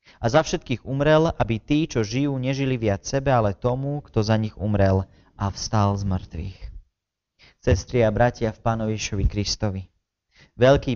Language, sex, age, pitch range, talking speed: Slovak, male, 30-49, 105-135 Hz, 155 wpm